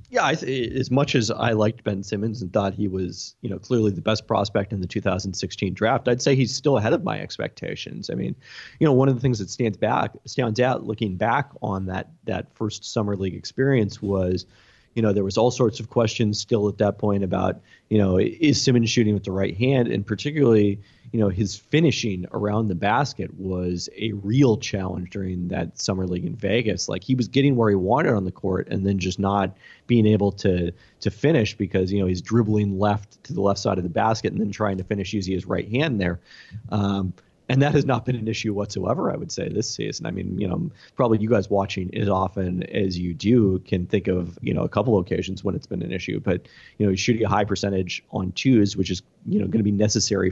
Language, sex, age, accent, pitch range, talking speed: English, male, 30-49, American, 95-115 Hz, 235 wpm